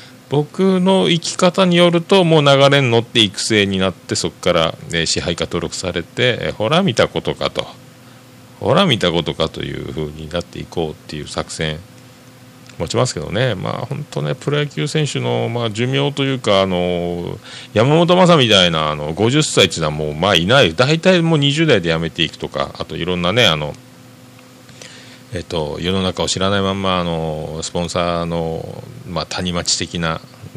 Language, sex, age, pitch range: Japanese, male, 40-59, 85-125 Hz